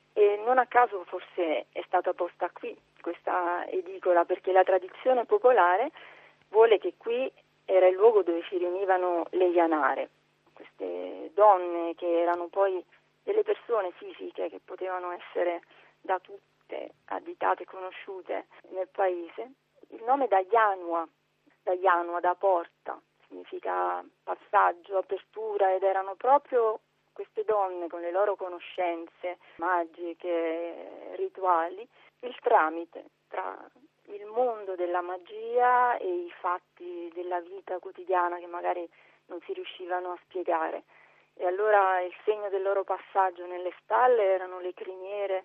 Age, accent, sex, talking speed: 40-59, native, female, 130 wpm